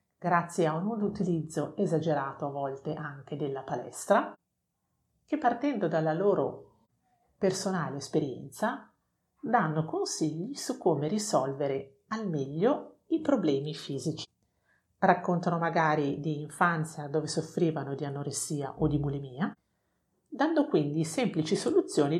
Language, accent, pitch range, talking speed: Italian, native, 150-200 Hz, 110 wpm